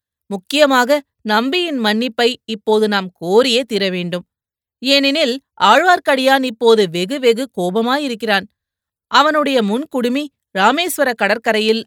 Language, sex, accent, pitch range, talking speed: Tamil, female, native, 205-255 Hz, 85 wpm